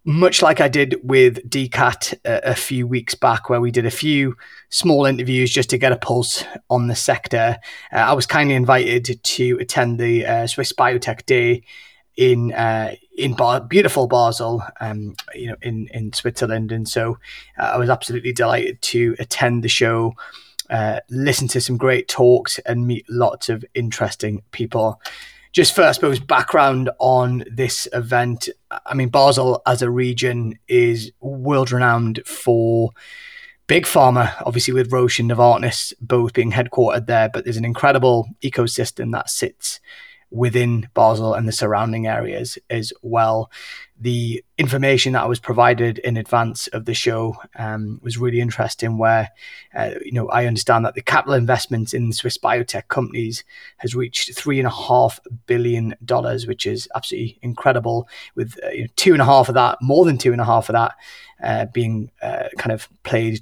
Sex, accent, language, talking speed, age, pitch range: male, British, English, 170 wpm, 20-39, 115-125 Hz